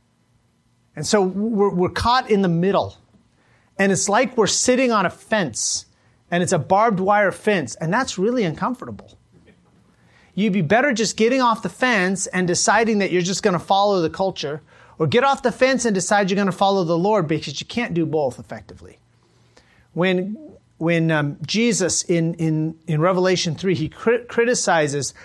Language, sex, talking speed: English, male, 180 wpm